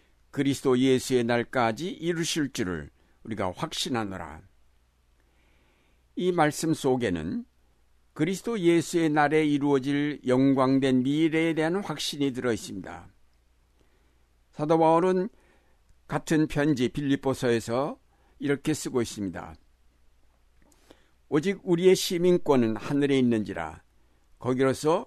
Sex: male